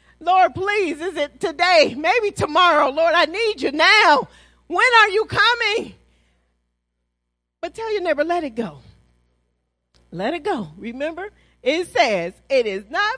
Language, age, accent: English, 40-59, American